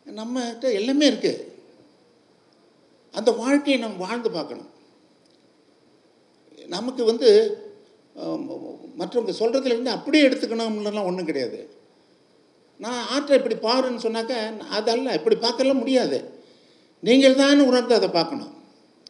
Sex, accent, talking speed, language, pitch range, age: male, native, 95 wpm, Tamil, 215-280 Hz, 50-69